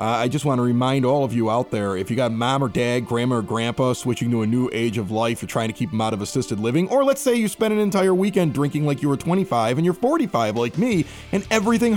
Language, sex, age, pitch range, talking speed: English, male, 30-49, 115-165 Hz, 280 wpm